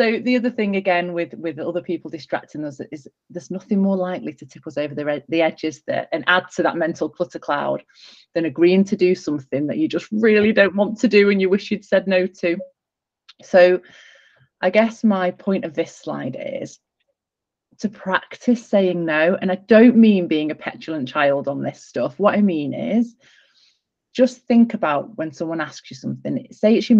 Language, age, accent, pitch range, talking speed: English, 30-49, British, 160-215 Hz, 200 wpm